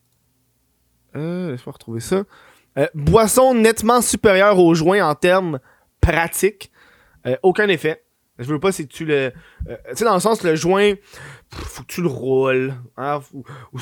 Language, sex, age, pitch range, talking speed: French, male, 20-39, 150-195 Hz, 170 wpm